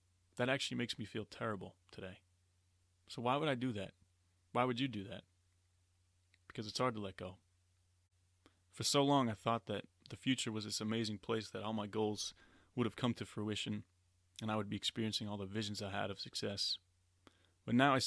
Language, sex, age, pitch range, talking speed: English, male, 20-39, 90-115 Hz, 200 wpm